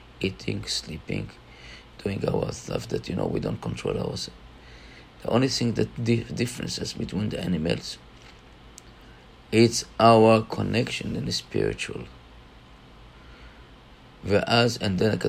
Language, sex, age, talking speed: English, male, 50-69, 100 wpm